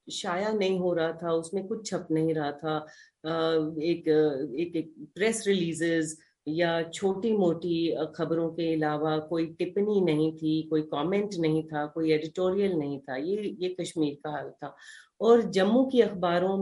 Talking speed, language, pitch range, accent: 160 wpm, Hindi, 160-215 Hz, native